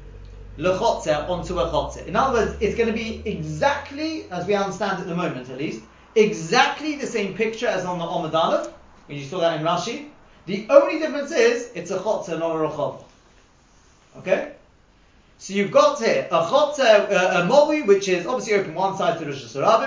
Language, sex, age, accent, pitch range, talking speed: English, male, 30-49, British, 170-245 Hz, 185 wpm